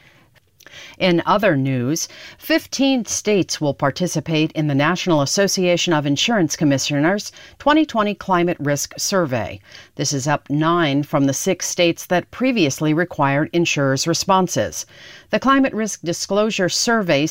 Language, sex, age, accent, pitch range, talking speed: English, female, 50-69, American, 150-205 Hz, 125 wpm